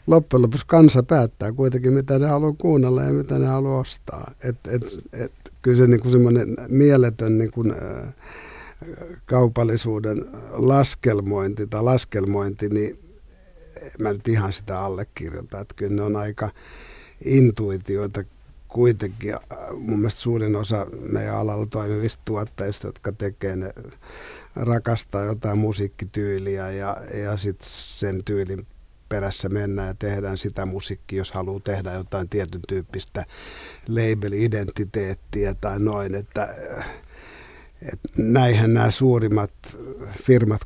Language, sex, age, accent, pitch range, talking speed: Finnish, male, 60-79, native, 100-125 Hz, 115 wpm